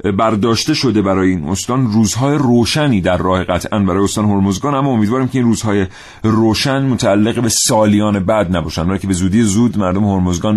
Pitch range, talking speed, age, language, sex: 95-115 Hz, 170 wpm, 40-59, Persian, male